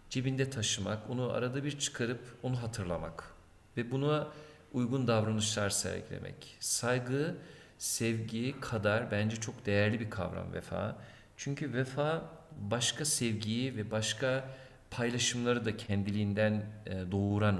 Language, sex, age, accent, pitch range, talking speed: Turkish, male, 50-69, native, 105-130 Hz, 110 wpm